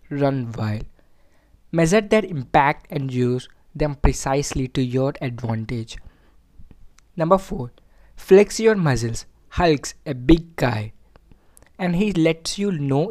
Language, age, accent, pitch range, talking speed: English, 20-39, Indian, 125-165 Hz, 120 wpm